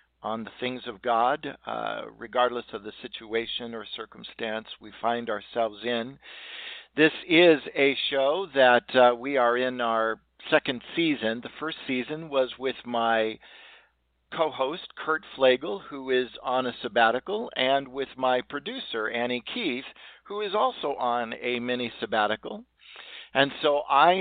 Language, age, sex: English, 50-69, male